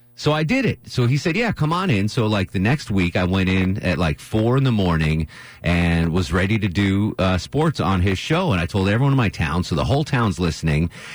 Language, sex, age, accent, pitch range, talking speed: English, male, 30-49, American, 95-130 Hz, 255 wpm